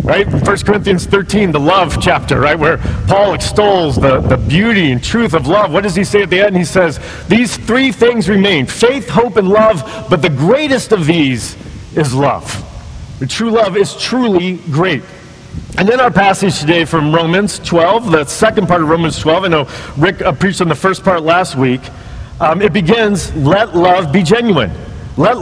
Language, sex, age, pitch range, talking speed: English, male, 40-59, 150-205 Hz, 190 wpm